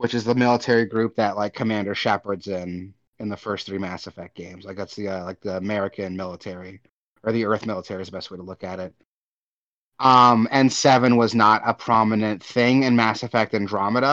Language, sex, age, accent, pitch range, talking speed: English, male, 30-49, American, 100-120 Hz, 210 wpm